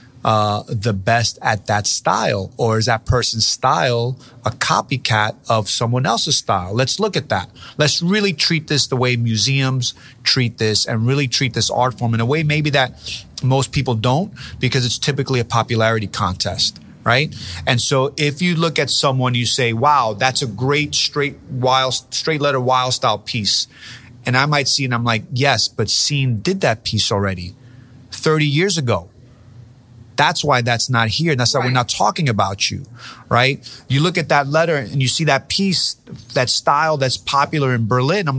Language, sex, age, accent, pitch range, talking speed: English, male, 30-49, American, 115-140 Hz, 185 wpm